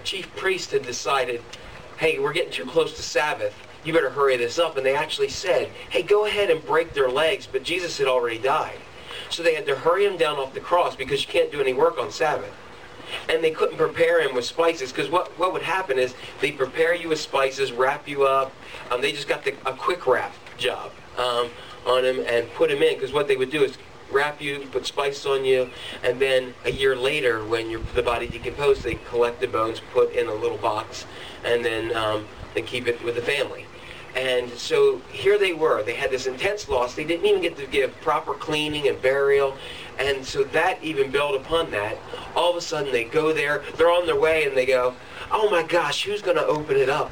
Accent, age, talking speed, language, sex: American, 40-59, 225 wpm, English, male